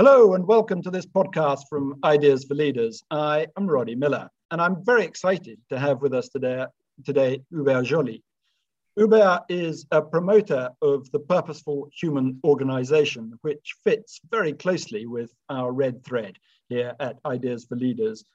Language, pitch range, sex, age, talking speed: English, 125-160 Hz, male, 50-69, 155 wpm